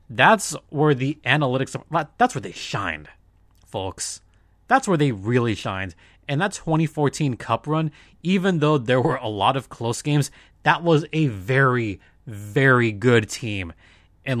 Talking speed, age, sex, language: 150 wpm, 30-49, male, English